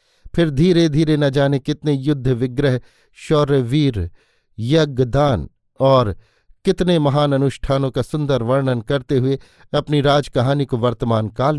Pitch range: 125-150 Hz